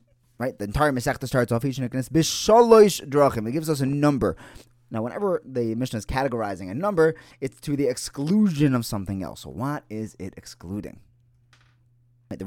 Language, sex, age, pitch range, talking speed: English, male, 20-39, 115-150 Hz, 165 wpm